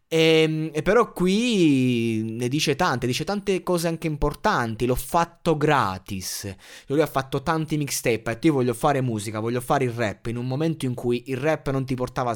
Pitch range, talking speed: 115-155 Hz, 195 wpm